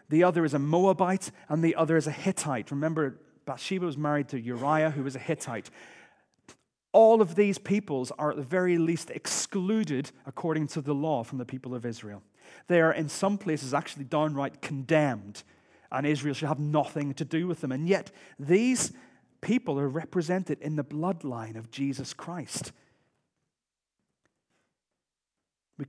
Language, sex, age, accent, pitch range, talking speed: English, male, 40-59, British, 125-160 Hz, 160 wpm